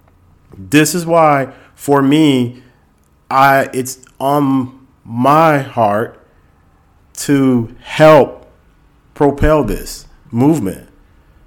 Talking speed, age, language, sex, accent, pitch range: 80 wpm, 40-59, English, male, American, 115-145 Hz